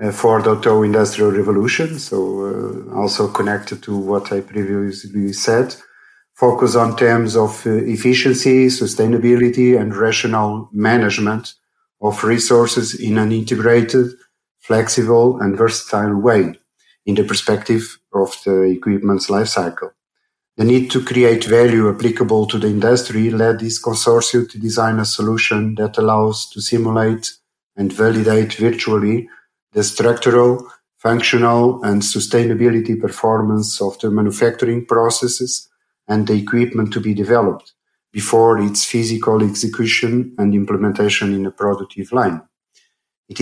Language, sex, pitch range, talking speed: English, male, 105-120 Hz, 125 wpm